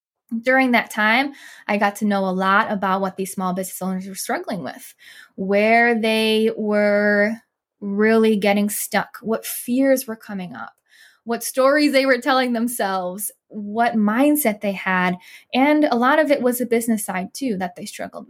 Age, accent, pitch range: 10-29, American, 205-255 Hz